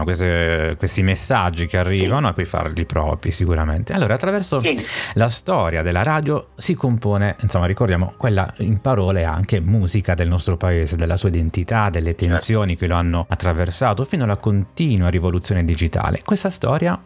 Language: Italian